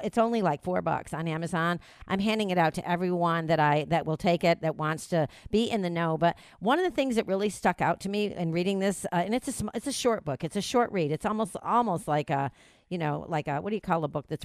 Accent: American